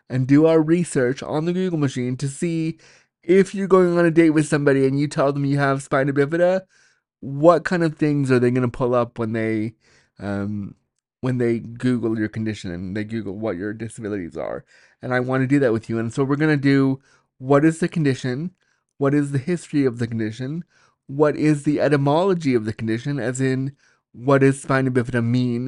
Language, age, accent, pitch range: English, 30-49, American, 125-155 Hz